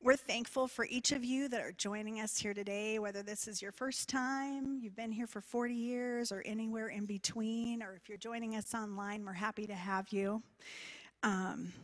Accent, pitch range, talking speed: American, 205-260 Hz, 205 wpm